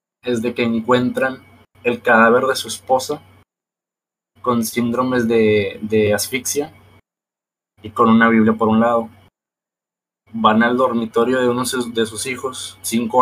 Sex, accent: male, Mexican